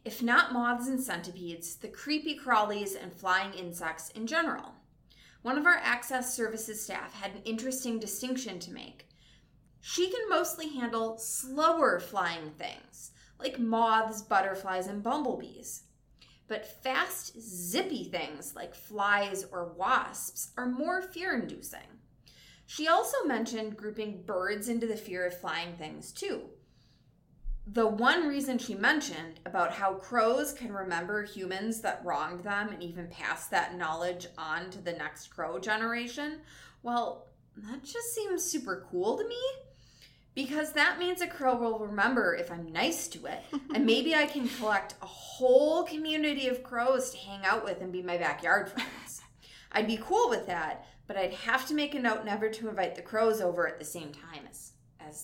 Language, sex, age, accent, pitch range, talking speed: English, female, 20-39, American, 190-280 Hz, 160 wpm